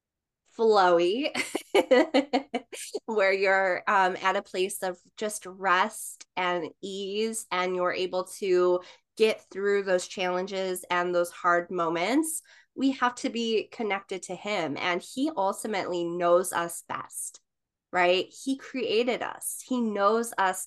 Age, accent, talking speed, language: 20-39, American, 130 wpm, English